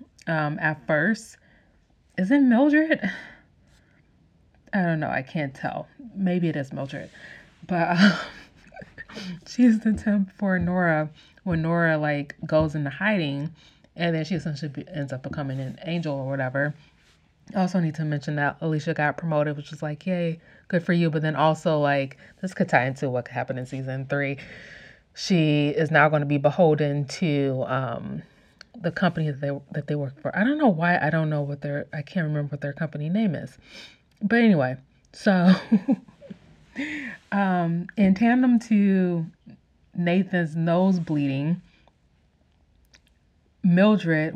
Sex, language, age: female, English, 30-49